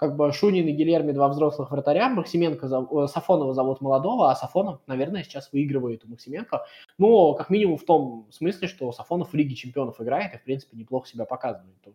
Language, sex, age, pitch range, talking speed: Russian, male, 20-39, 130-165 Hz, 190 wpm